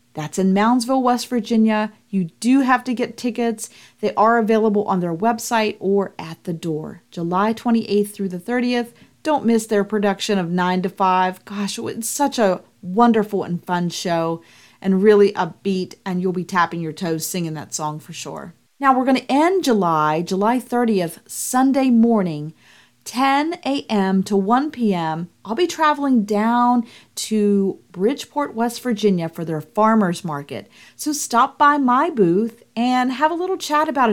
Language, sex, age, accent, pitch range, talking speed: English, female, 40-59, American, 185-235 Hz, 165 wpm